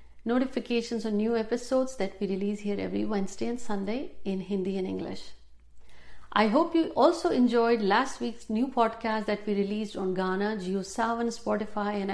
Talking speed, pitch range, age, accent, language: 175 wpm, 190-255 Hz, 50-69, native, Hindi